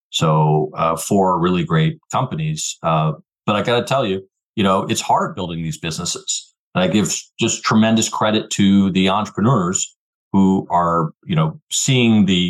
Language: English